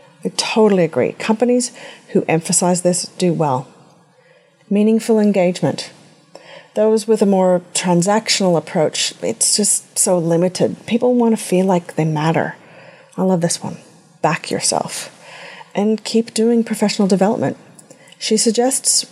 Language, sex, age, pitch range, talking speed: English, female, 30-49, 170-220 Hz, 130 wpm